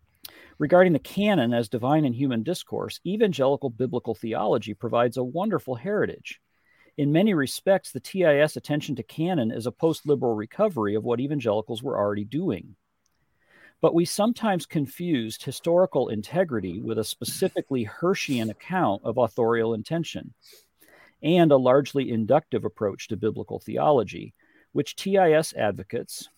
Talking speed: 130 wpm